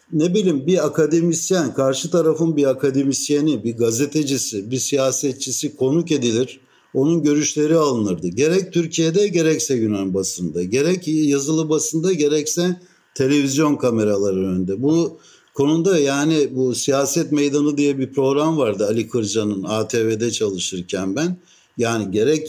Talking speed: 125 wpm